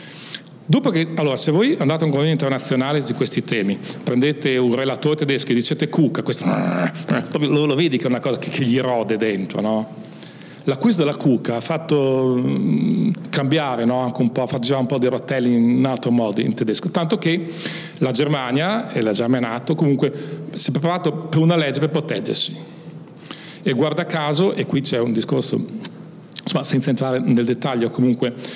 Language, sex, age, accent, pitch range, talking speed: Italian, male, 40-59, native, 125-165 Hz, 190 wpm